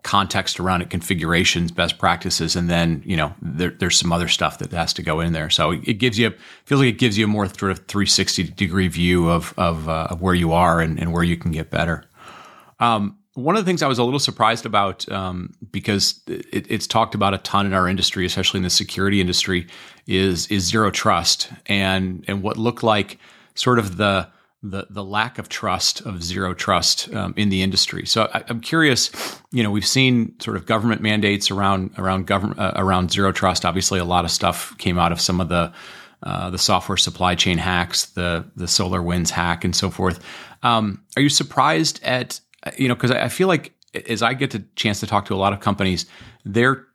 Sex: male